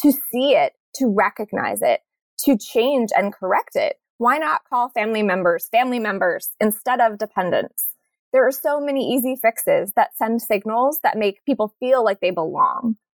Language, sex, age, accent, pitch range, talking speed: English, female, 20-39, American, 205-270 Hz, 170 wpm